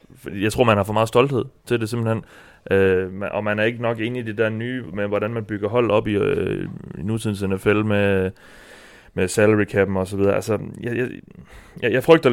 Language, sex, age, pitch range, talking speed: Danish, male, 30-49, 100-115 Hz, 215 wpm